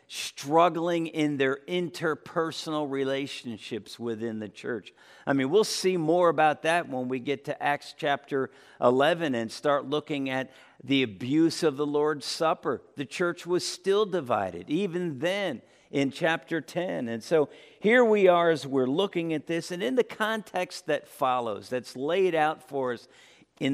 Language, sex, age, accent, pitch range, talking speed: English, male, 50-69, American, 140-180 Hz, 160 wpm